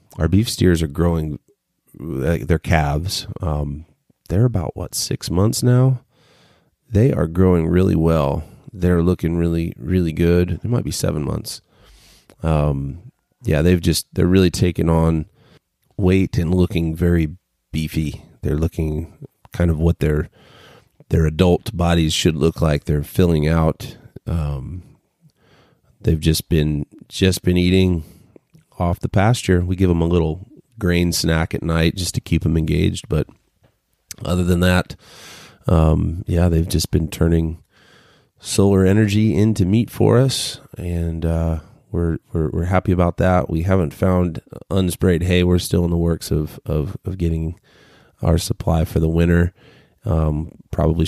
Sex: male